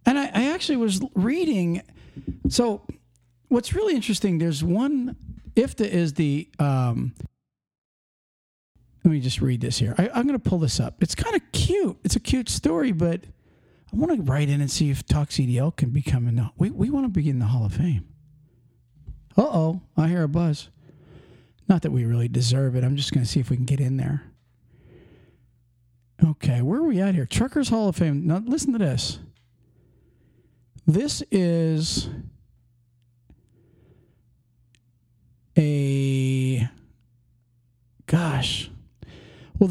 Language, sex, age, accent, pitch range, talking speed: English, male, 50-69, American, 120-175 Hz, 155 wpm